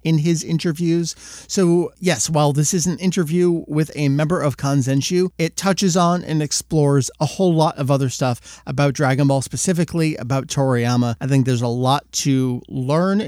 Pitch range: 135-180 Hz